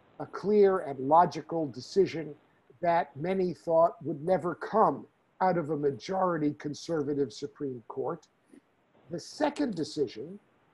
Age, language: 50-69, English